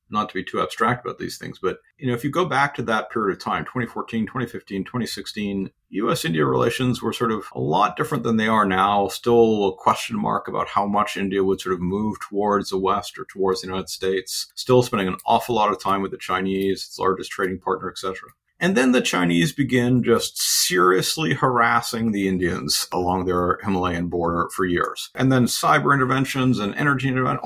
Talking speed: 205 wpm